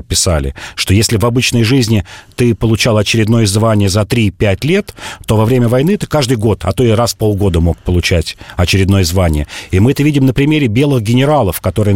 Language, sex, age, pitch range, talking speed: Russian, male, 40-59, 100-130 Hz, 195 wpm